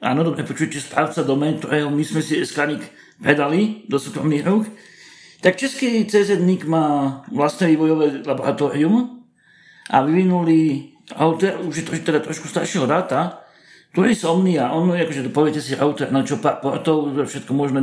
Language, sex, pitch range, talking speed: Slovak, male, 145-185 Hz, 160 wpm